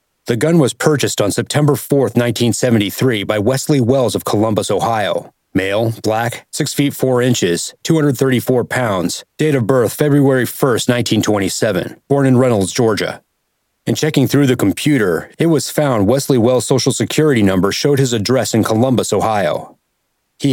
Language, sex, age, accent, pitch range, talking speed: English, male, 30-49, American, 110-135 Hz, 150 wpm